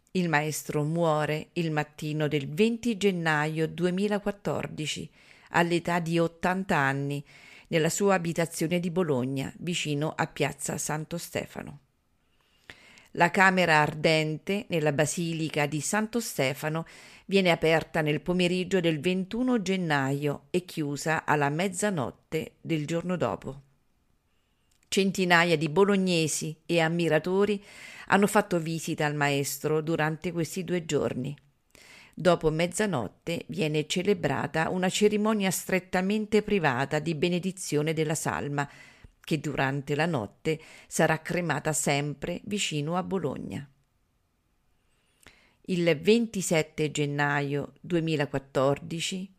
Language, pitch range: English, 145-180 Hz